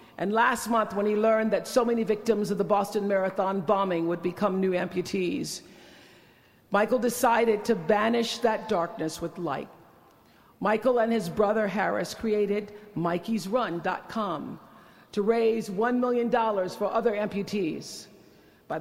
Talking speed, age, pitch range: 135 wpm, 50-69, 185-235 Hz